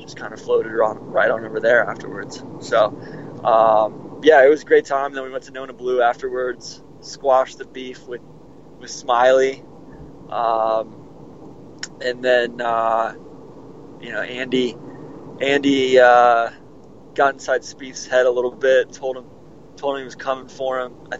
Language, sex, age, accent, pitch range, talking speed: English, male, 20-39, American, 125-160 Hz, 160 wpm